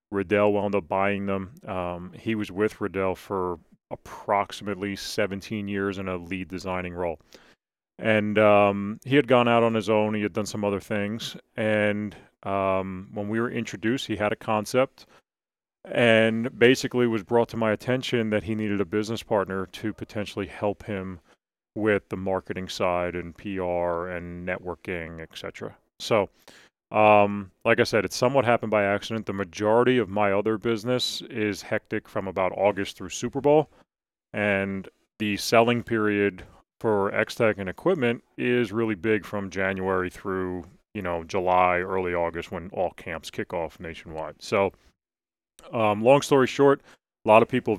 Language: English